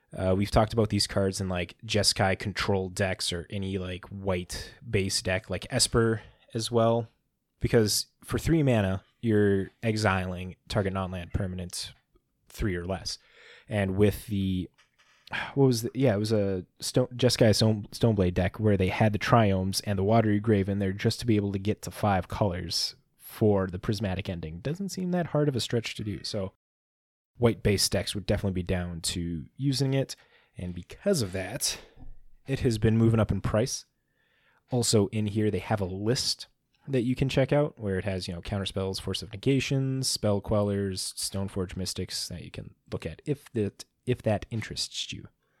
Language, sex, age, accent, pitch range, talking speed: English, male, 20-39, American, 95-115 Hz, 185 wpm